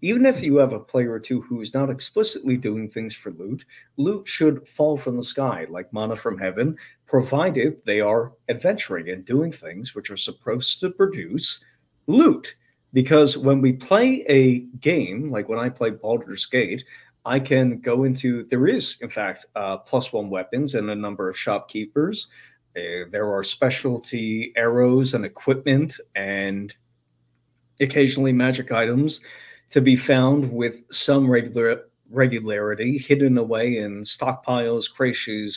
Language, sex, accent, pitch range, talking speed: English, male, American, 110-135 Hz, 155 wpm